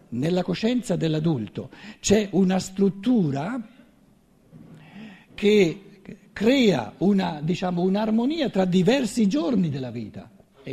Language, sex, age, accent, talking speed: Italian, male, 60-79, native, 95 wpm